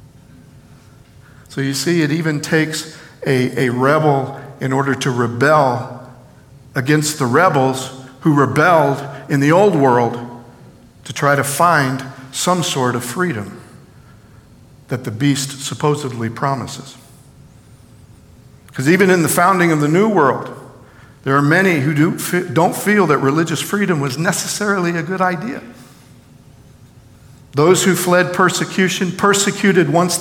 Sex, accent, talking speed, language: male, American, 125 wpm, English